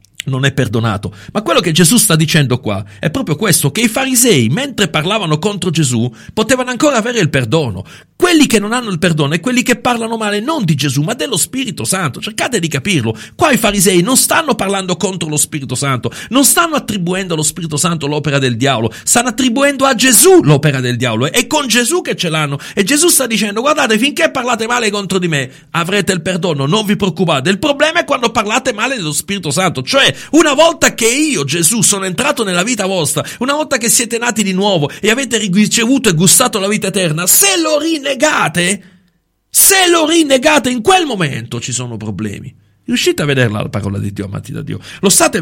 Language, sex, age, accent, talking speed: Italian, male, 40-59, native, 205 wpm